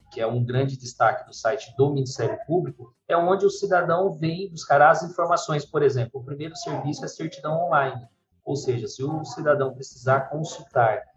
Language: Portuguese